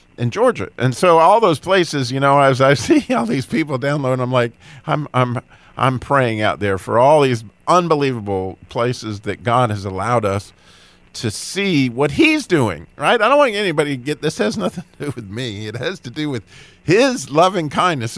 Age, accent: 50-69, American